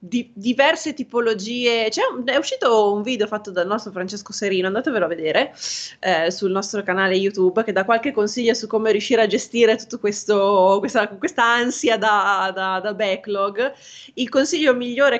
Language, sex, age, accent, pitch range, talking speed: Italian, female, 20-39, native, 190-220 Hz, 165 wpm